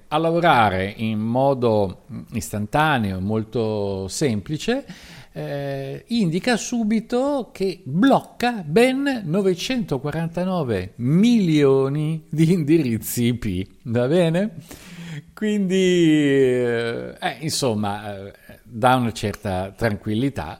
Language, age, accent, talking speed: Italian, 50-69, native, 80 wpm